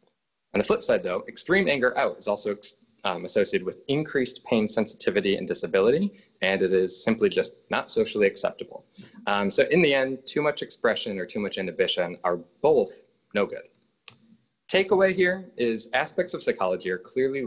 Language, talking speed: English, 170 wpm